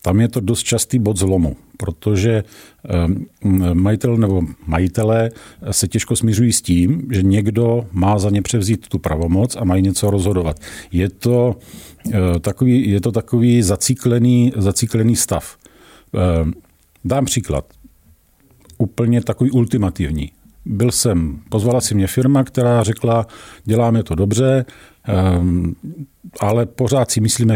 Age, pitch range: 50-69, 95-115 Hz